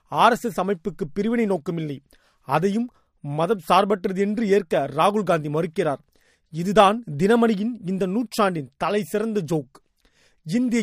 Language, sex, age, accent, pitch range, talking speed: Tamil, male, 30-49, native, 185-225 Hz, 115 wpm